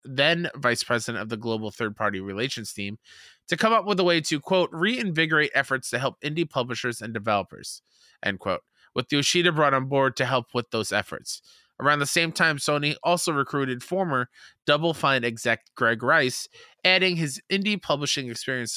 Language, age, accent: English, 20-39, American